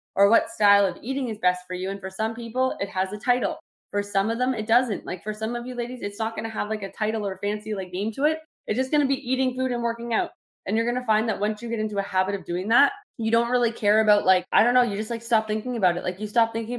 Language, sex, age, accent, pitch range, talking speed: English, female, 20-39, American, 185-225 Hz, 305 wpm